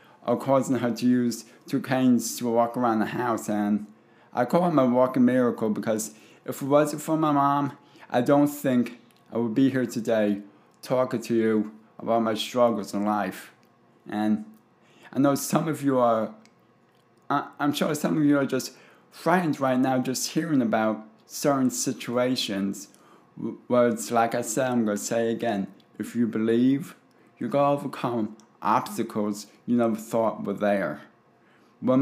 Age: 20-39